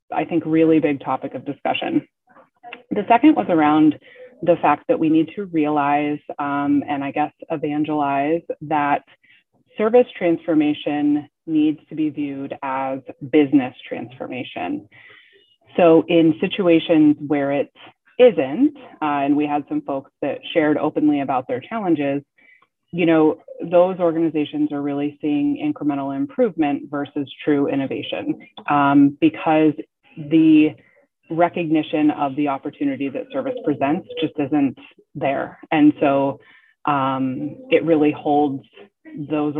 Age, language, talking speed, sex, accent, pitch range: 20-39, English, 125 wpm, female, American, 145-210 Hz